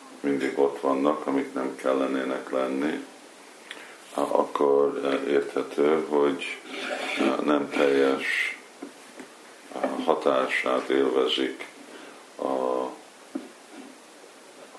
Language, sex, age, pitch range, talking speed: Hungarian, male, 50-69, 65-70 Hz, 65 wpm